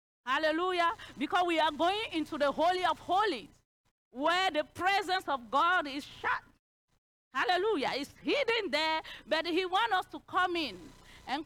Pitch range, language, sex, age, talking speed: 275-370 Hz, English, female, 40-59, 150 wpm